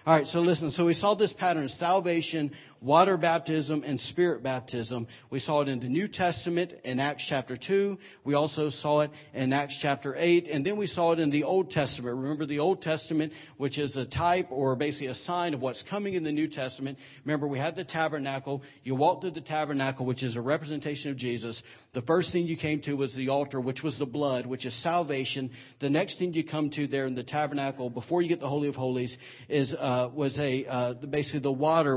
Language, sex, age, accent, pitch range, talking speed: English, male, 40-59, American, 130-155 Hz, 225 wpm